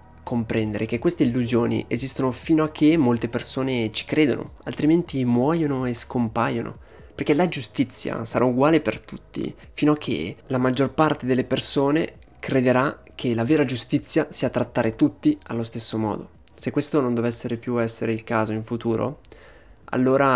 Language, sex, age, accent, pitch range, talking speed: Italian, male, 20-39, native, 115-135 Hz, 155 wpm